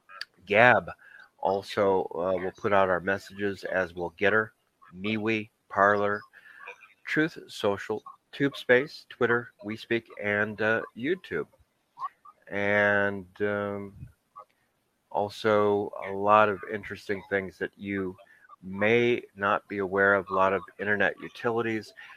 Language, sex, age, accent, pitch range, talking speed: English, male, 40-59, American, 95-110 Hz, 120 wpm